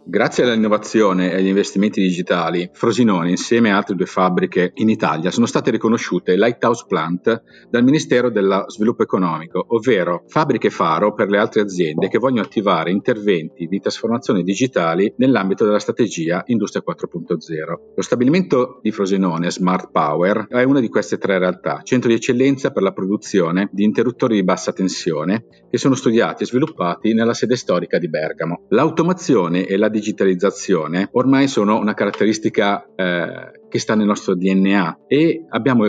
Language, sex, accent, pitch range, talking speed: Italian, male, native, 95-120 Hz, 155 wpm